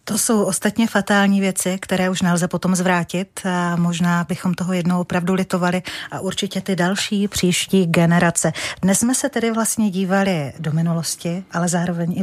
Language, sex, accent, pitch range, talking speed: Czech, female, native, 170-195 Hz, 165 wpm